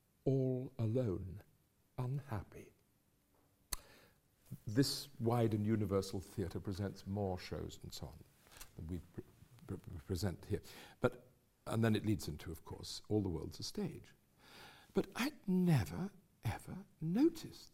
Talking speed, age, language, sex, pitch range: 130 wpm, 60-79, English, male, 105-165 Hz